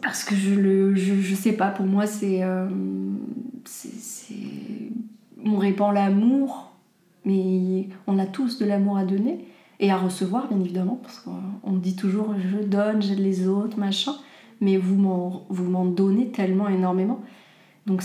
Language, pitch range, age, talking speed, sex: French, 190-225 Hz, 20-39, 165 wpm, female